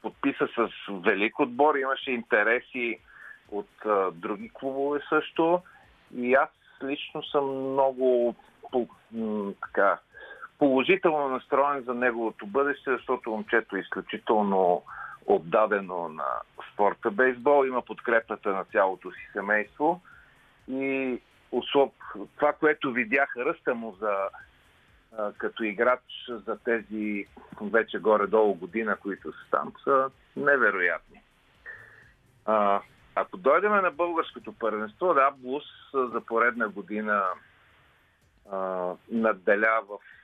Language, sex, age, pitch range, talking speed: Bulgarian, male, 50-69, 105-140 Hz, 105 wpm